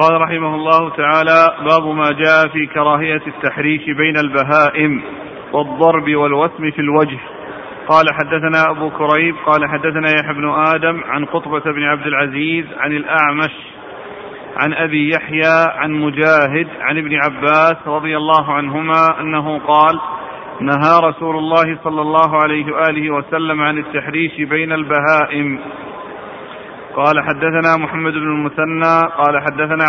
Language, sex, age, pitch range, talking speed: Arabic, male, 40-59, 150-160 Hz, 130 wpm